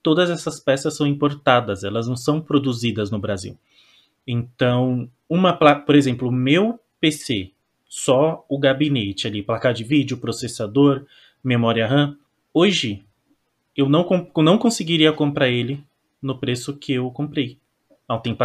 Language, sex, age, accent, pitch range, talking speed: Portuguese, male, 20-39, Brazilian, 125-155 Hz, 145 wpm